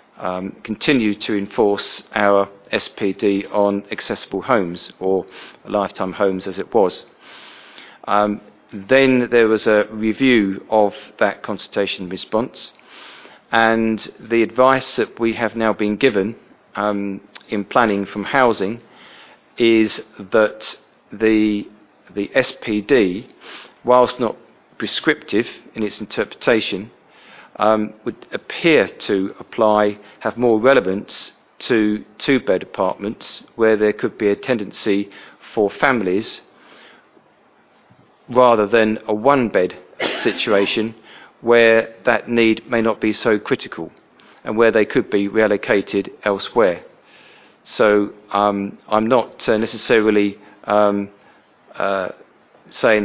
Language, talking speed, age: English, 110 wpm, 40-59